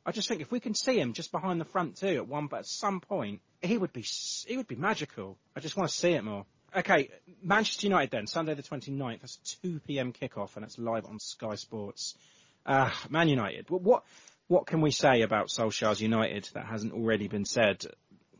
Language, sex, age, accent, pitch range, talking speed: English, male, 30-49, British, 110-155 Hz, 210 wpm